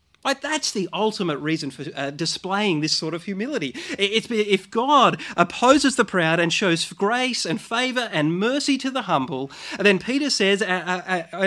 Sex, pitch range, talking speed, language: male, 160-220 Hz, 175 wpm, English